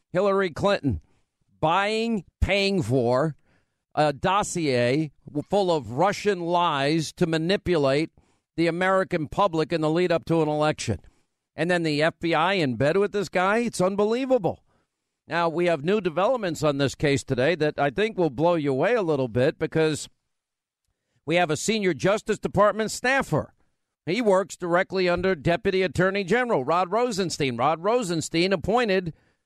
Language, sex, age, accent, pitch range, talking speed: English, male, 50-69, American, 155-205 Hz, 150 wpm